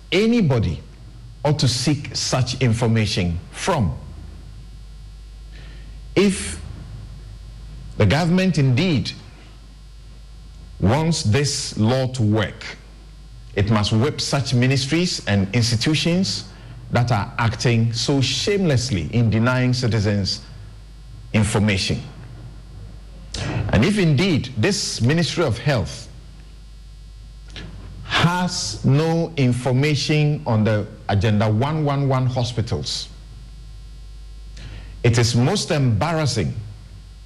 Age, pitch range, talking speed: 50-69, 110-145 Hz, 80 wpm